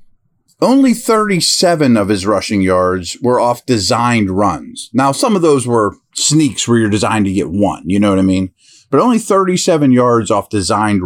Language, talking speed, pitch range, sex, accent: English, 180 wpm, 110-150 Hz, male, American